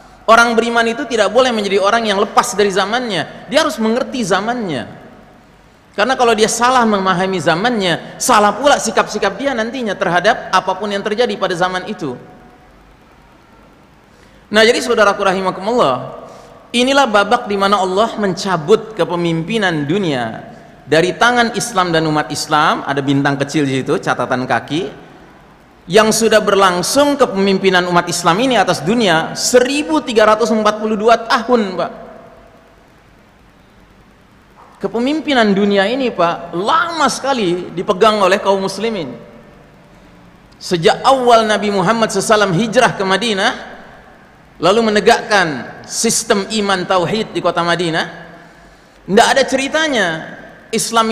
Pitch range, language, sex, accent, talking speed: 185-235 Hz, Indonesian, male, native, 115 wpm